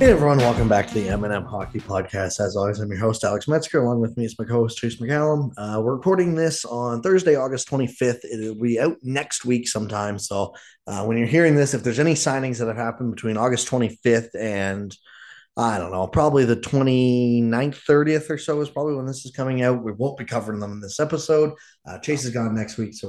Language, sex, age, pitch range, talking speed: English, male, 20-39, 115-155 Hz, 225 wpm